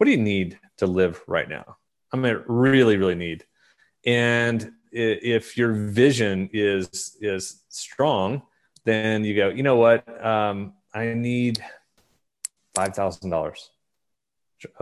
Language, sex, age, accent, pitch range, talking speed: English, male, 30-49, American, 100-145 Hz, 130 wpm